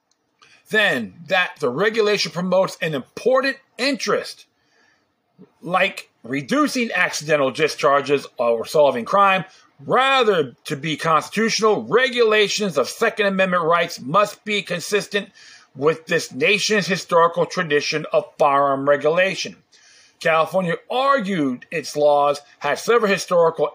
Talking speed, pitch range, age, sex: 105 wpm, 150-210 Hz, 40-59, male